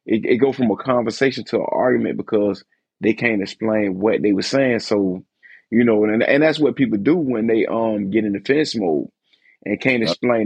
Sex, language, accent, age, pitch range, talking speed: male, English, American, 30-49, 105-125 Hz, 205 wpm